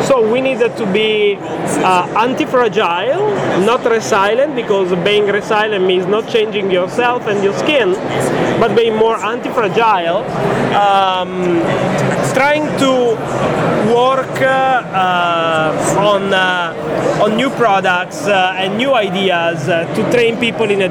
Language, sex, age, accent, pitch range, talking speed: English, male, 30-49, Italian, 185-225 Hz, 125 wpm